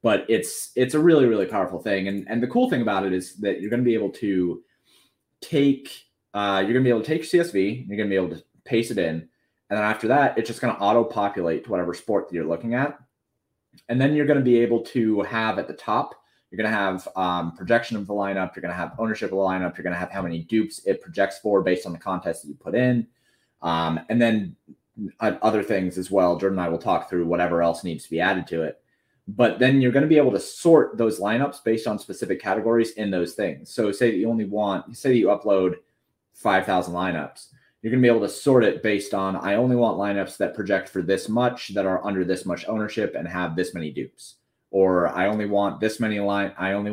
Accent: American